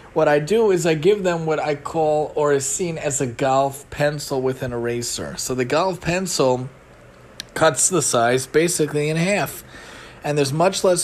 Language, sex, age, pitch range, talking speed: English, male, 30-49, 130-155 Hz, 185 wpm